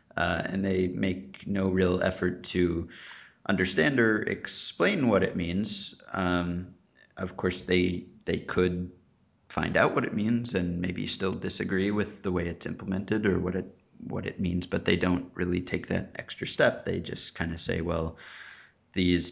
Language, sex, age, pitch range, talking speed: English, male, 30-49, 85-100 Hz, 170 wpm